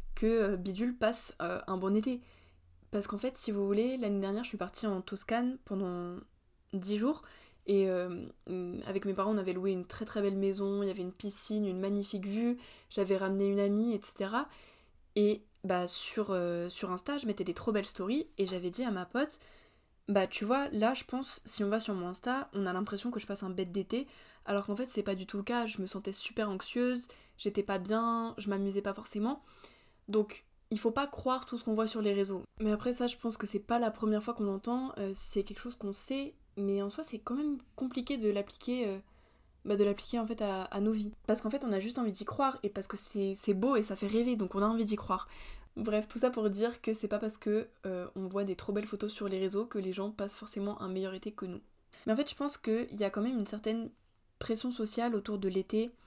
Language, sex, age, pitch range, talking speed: French, female, 20-39, 195-230 Hz, 245 wpm